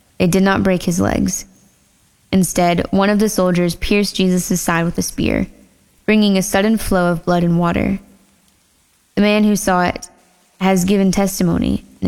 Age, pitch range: 10-29, 175-195 Hz